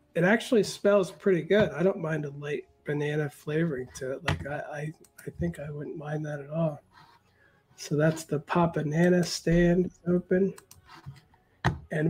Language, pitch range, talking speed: English, 150-185 Hz, 165 wpm